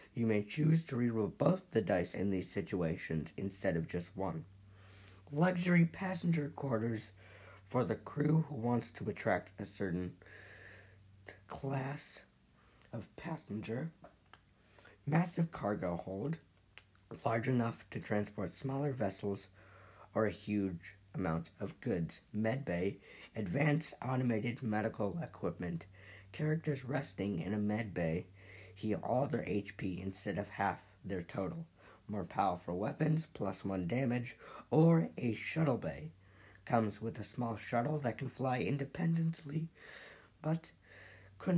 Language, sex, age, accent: English, male, 50-69, American